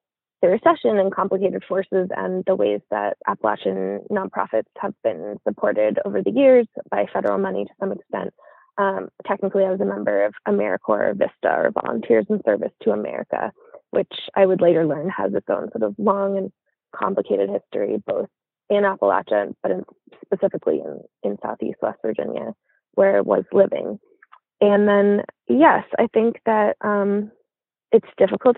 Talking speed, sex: 160 wpm, female